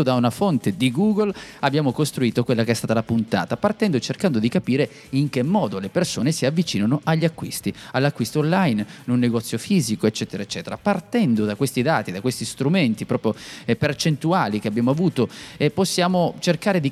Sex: male